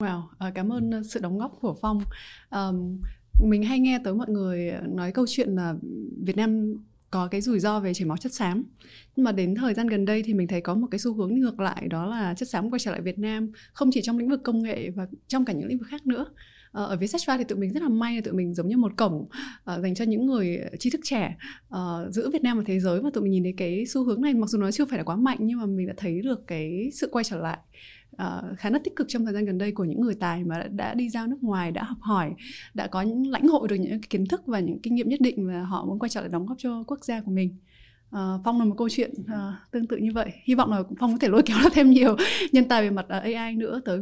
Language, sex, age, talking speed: Vietnamese, female, 20-39, 290 wpm